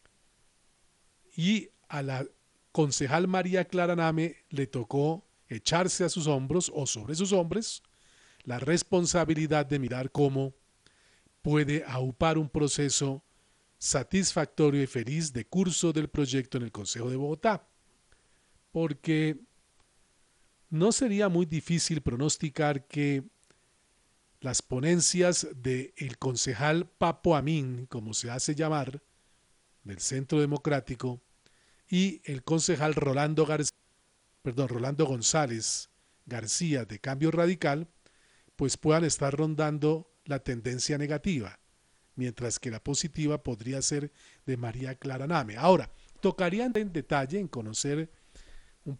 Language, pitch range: Spanish, 130-160 Hz